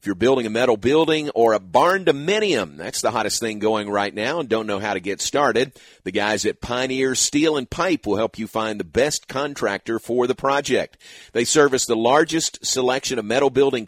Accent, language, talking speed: American, English, 210 wpm